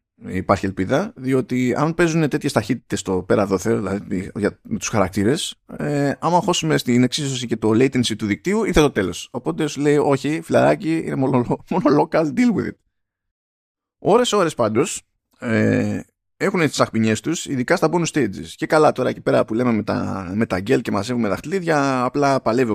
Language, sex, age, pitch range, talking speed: Greek, male, 20-39, 105-150 Hz, 170 wpm